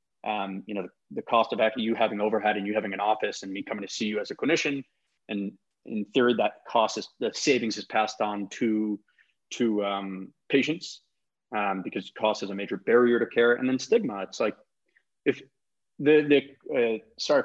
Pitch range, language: 105-130 Hz, English